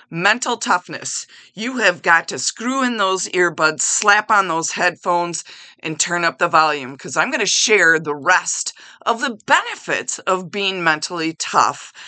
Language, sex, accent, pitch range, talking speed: English, female, American, 170-220 Hz, 165 wpm